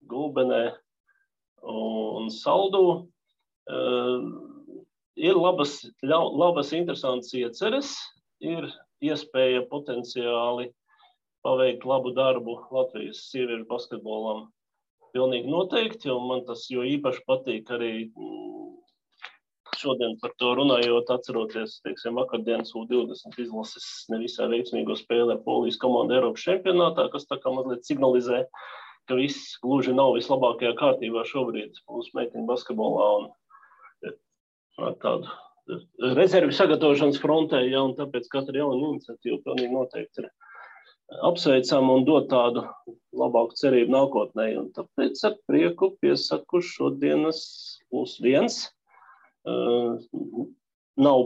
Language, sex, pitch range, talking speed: English, male, 120-180 Hz, 105 wpm